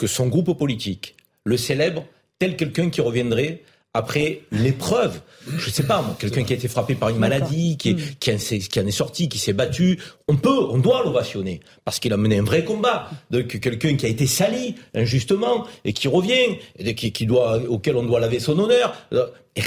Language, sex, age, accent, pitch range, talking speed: French, male, 50-69, French, 125-180 Hz, 200 wpm